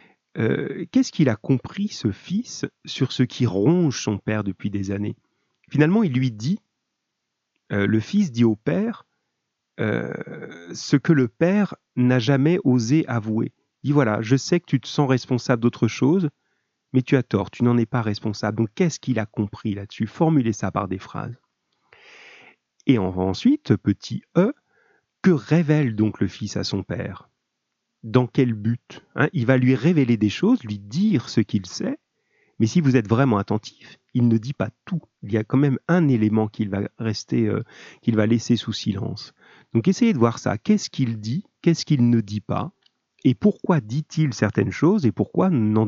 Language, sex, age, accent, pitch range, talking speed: French, male, 40-59, French, 110-150 Hz, 185 wpm